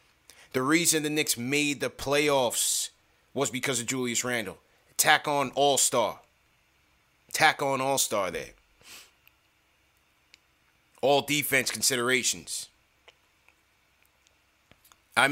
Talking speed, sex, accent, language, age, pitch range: 90 wpm, male, American, English, 30-49, 120-150 Hz